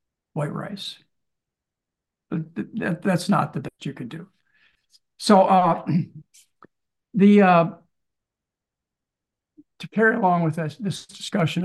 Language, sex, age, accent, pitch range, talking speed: English, male, 60-79, American, 155-200 Hz, 115 wpm